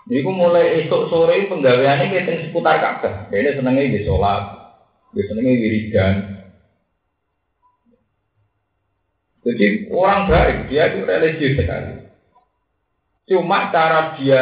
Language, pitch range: Indonesian, 100-140 Hz